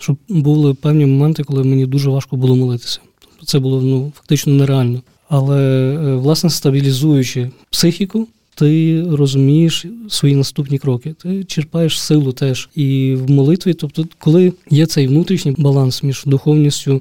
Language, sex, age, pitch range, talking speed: Ukrainian, male, 20-39, 135-155 Hz, 140 wpm